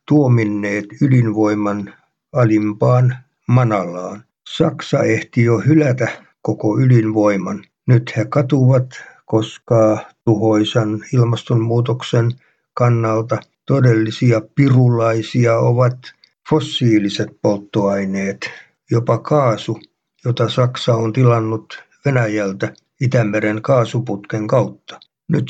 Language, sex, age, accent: Finnish, male, 60-79, native